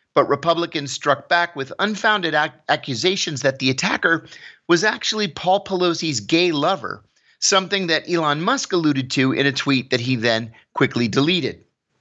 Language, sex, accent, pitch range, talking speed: English, male, American, 135-185 Hz, 150 wpm